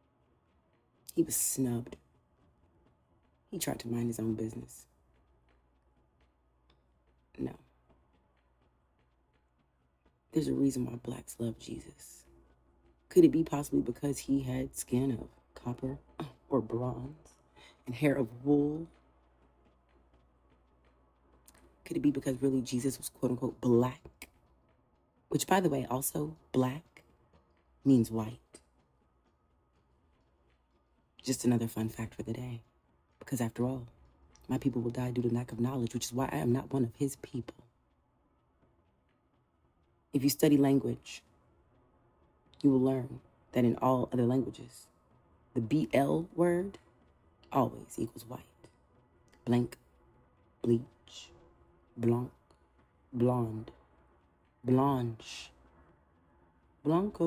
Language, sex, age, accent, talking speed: English, female, 40-59, American, 110 wpm